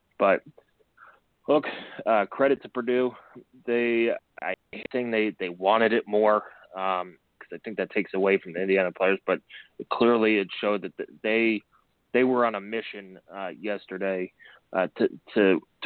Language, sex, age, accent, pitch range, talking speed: English, male, 20-39, American, 100-120 Hz, 155 wpm